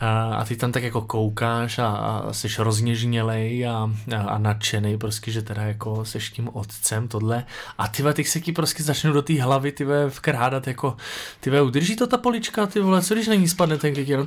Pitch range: 130-165 Hz